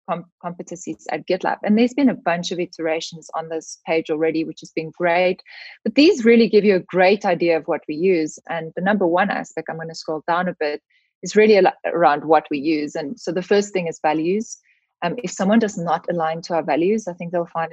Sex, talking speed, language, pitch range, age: female, 230 wpm, English, 160-210 Hz, 20-39